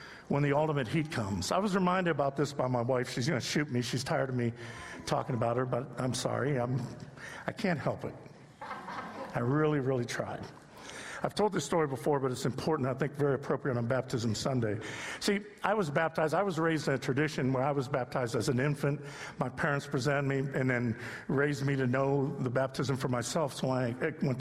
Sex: male